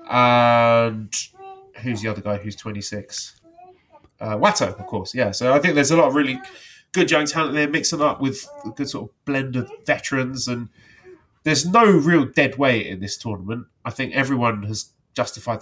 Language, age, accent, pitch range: English, 30-49, British, 110-135 Hz